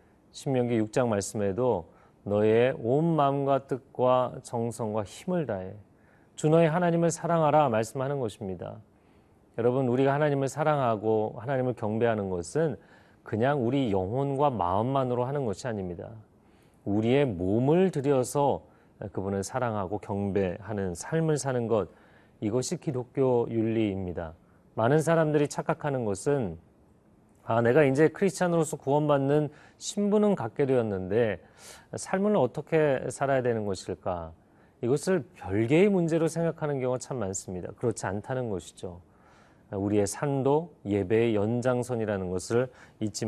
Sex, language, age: male, Korean, 40-59